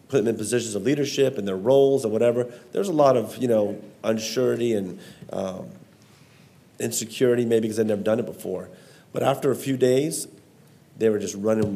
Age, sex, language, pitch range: 40-59, male, English, 105-120 Hz